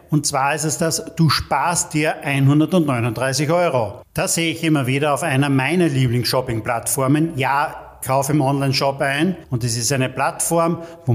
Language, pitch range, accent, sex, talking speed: German, 135-170 Hz, German, male, 160 wpm